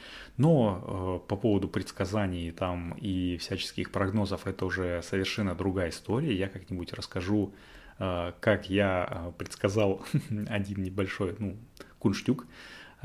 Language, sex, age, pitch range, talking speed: Russian, male, 20-39, 90-105 Hz, 105 wpm